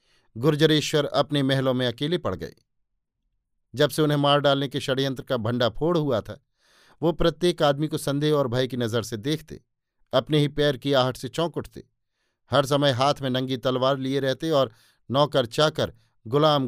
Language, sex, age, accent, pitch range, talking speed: Hindi, male, 50-69, native, 125-150 Hz, 180 wpm